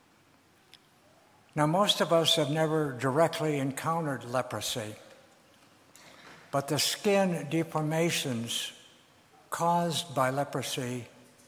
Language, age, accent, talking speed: English, 60-79, American, 85 wpm